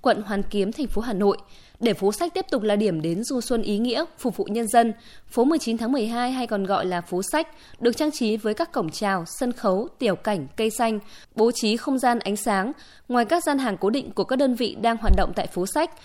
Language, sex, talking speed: Vietnamese, female, 255 wpm